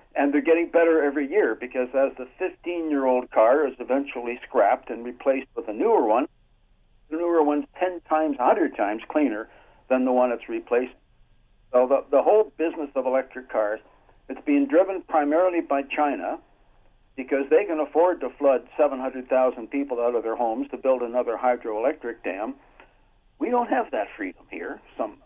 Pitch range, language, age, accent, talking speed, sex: 120-155 Hz, English, 60-79, American, 170 wpm, male